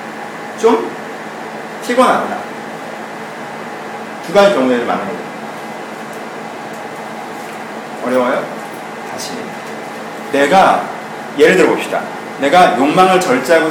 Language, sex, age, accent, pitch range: Korean, male, 40-59, native, 130-175 Hz